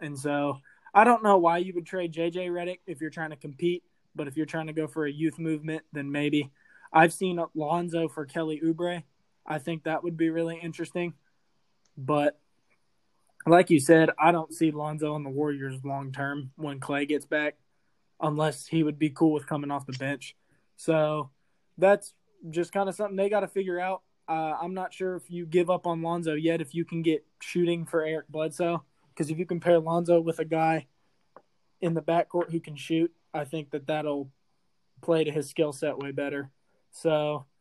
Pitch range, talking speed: 150-175 Hz, 200 wpm